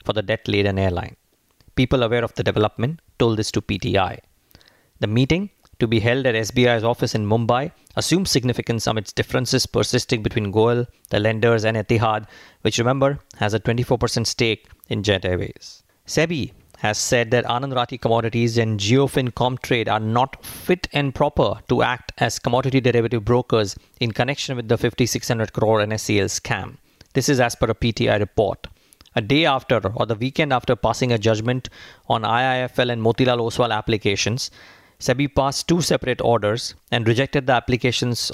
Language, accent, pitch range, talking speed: English, Indian, 110-130 Hz, 165 wpm